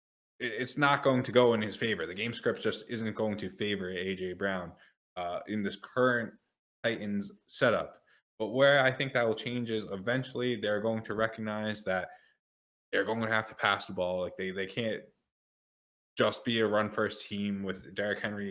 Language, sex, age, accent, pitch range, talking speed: English, male, 20-39, American, 100-115 Hz, 190 wpm